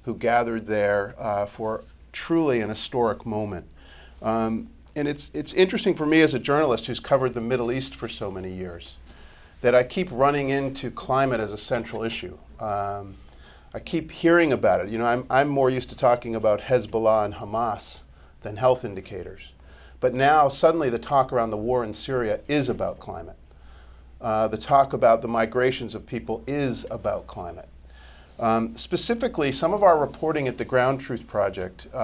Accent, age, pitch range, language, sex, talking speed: American, 40-59, 105-135 Hz, English, male, 175 wpm